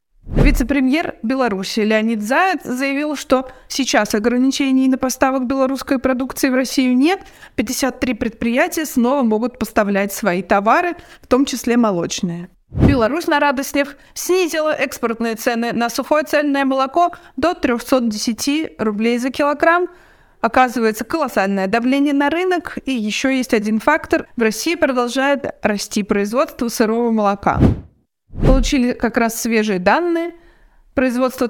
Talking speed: 120 wpm